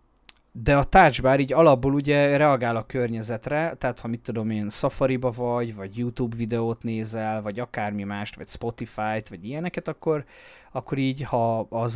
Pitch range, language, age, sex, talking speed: 105-130 Hz, Hungarian, 20-39, male, 165 wpm